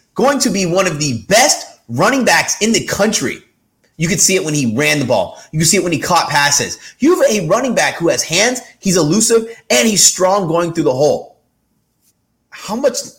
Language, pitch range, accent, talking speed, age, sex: English, 125-175 Hz, American, 220 wpm, 30-49, male